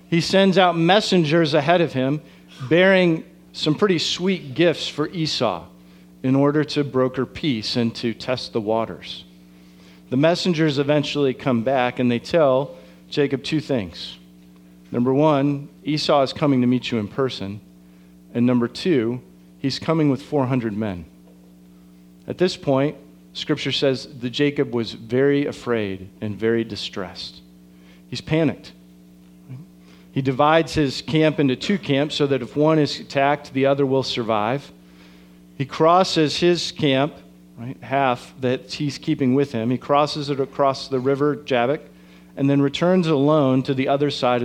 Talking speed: 150 wpm